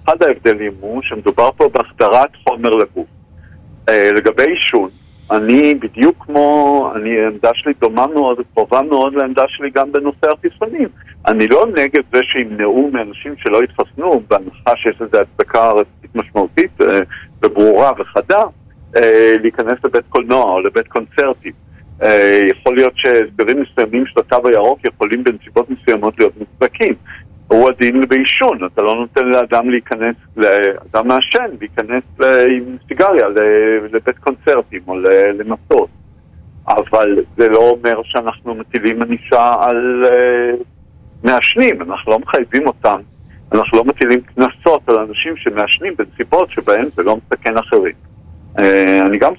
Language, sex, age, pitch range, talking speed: Hebrew, male, 50-69, 110-150 Hz, 125 wpm